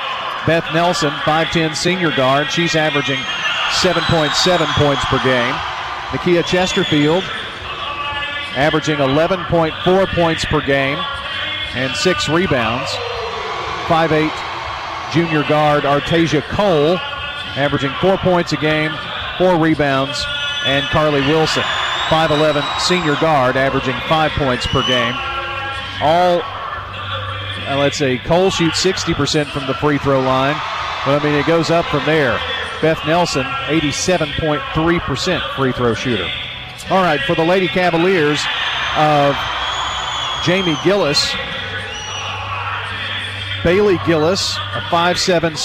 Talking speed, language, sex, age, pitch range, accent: 110 wpm, English, male, 40-59, 135-170 Hz, American